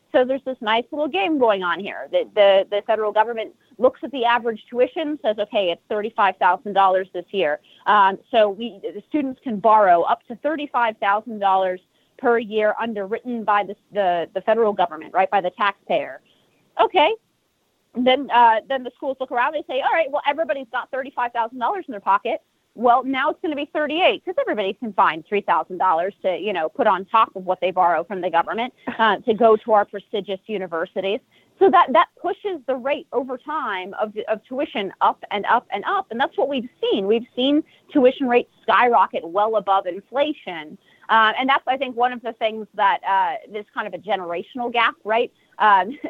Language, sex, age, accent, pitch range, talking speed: English, female, 30-49, American, 200-270 Hz, 190 wpm